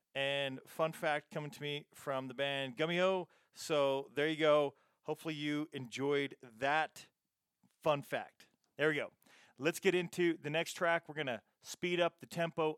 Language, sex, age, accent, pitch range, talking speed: English, male, 40-59, American, 130-155 Hz, 175 wpm